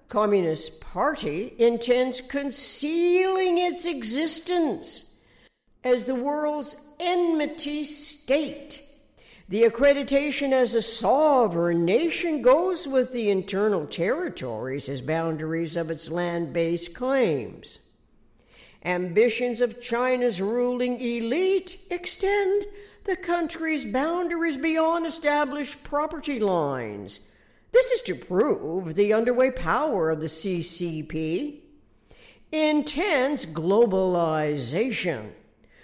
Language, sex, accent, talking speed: English, female, American, 90 wpm